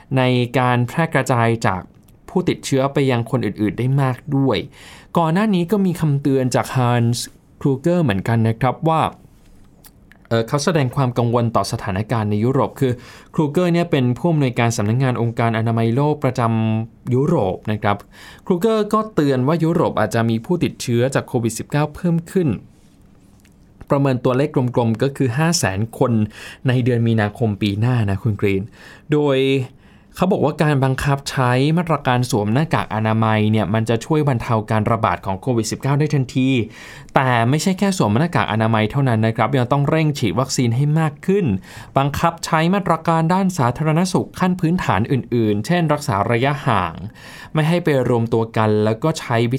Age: 20-39